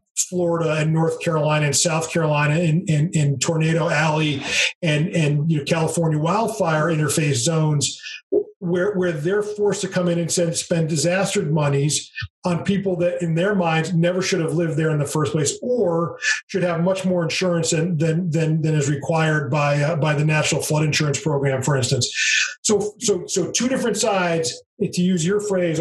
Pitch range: 155-185 Hz